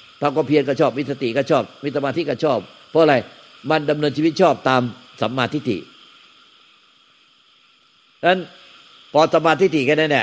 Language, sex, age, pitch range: Thai, male, 60-79, 125-150 Hz